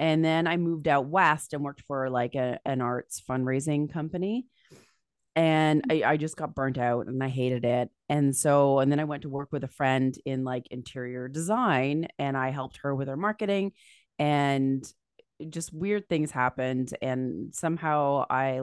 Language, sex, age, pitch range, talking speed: English, female, 30-49, 130-160 Hz, 180 wpm